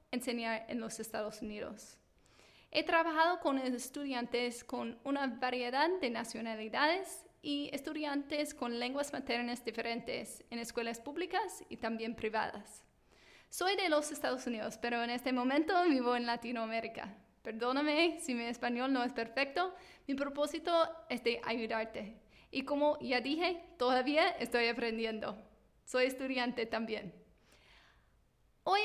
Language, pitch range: English, 235-295 Hz